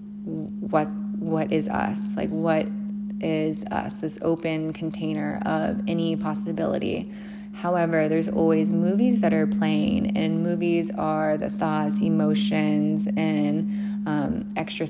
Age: 20-39